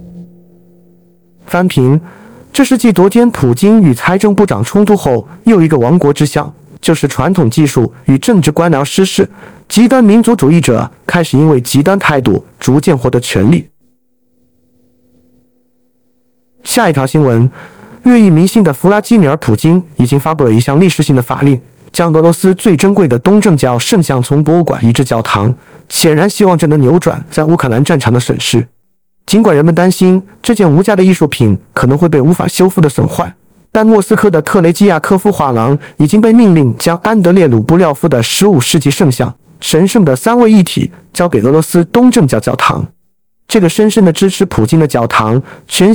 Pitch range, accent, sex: 135-190 Hz, native, male